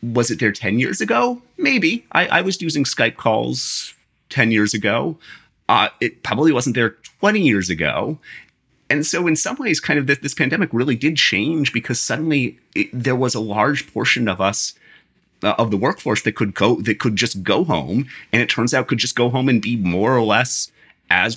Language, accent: English, American